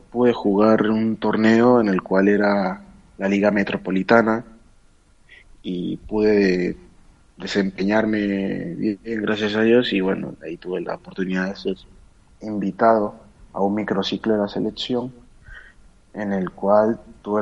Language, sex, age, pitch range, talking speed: Spanish, male, 30-49, 95-110 Hz, 125 wpm